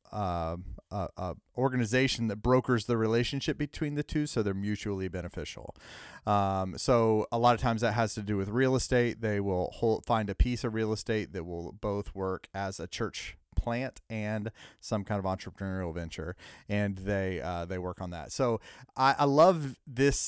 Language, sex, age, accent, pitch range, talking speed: English, male, 30-49, American, 95-115 Hz, 185 wpm